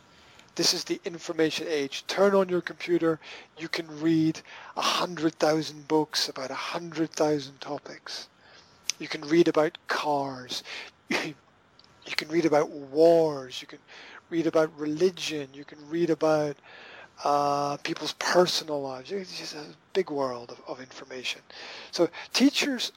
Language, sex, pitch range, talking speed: English, male, 145-170 Hz, 130 wpm